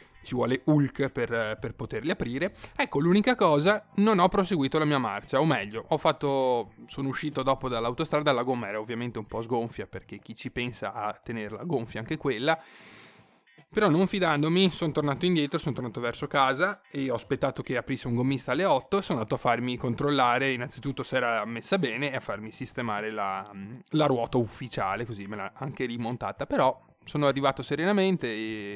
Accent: native